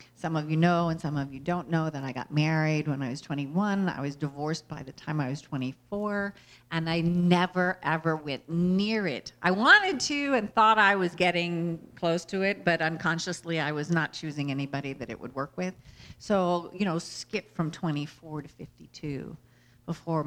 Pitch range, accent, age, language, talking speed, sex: 145-195 Hz, American, 50-69, English, 195 wpm, female